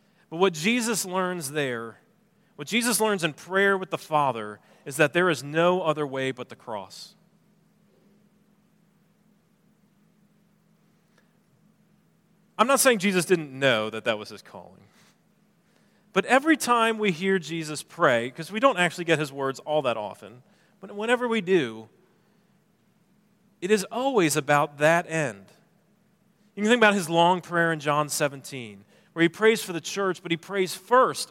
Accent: American